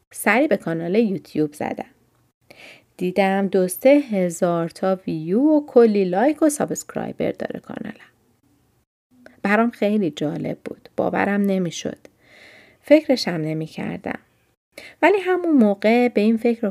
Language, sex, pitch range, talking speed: Persian, female, 175-245 Hz, 125 wpm